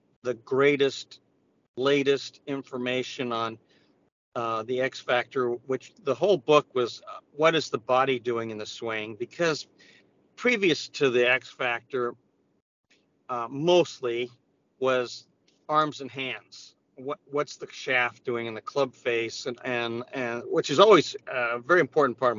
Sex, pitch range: male, 115-135 Hz